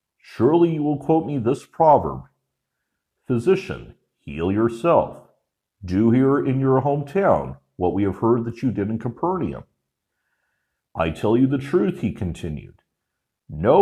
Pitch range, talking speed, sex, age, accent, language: 95-140 Hz, 140 wpm, male, 50-69, American, English